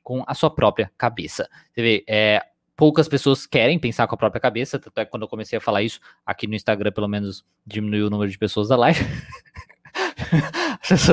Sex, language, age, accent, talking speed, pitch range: male, Portuguese, 20-39, Brazilian, 200 wpm, 110-145 Hz